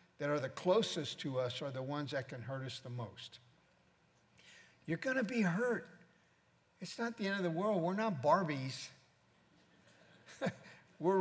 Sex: male